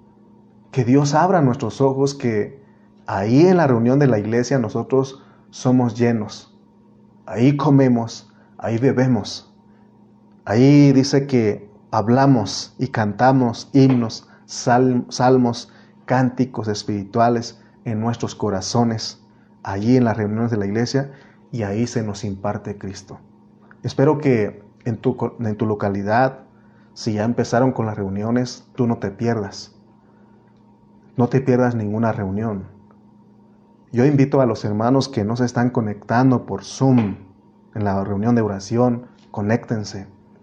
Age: 30-49